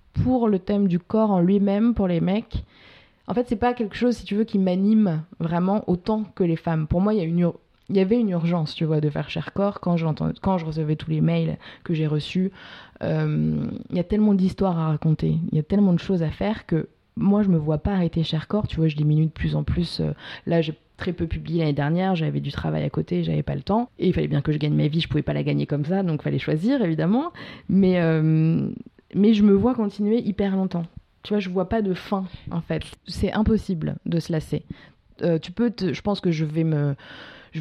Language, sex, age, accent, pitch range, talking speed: French, female, 20-39, French, 155-200 Hz, 245 wpm